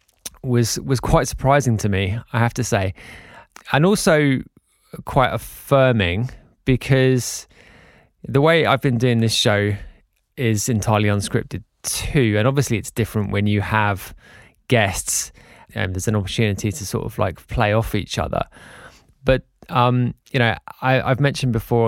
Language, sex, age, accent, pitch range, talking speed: English, male, 20-39, British, 105-125 Hz, 150 wpm